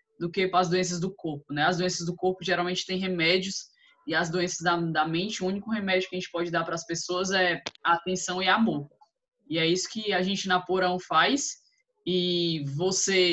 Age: 10-29